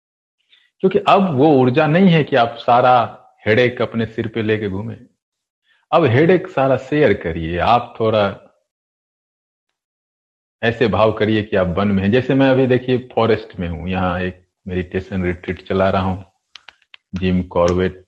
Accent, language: native, Hindi